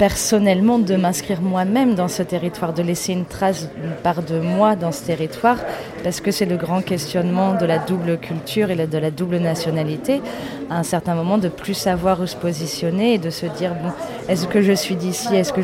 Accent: French